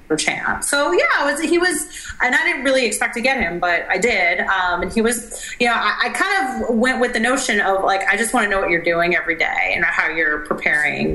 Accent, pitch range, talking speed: American, 165-220 Hz, 270 wpm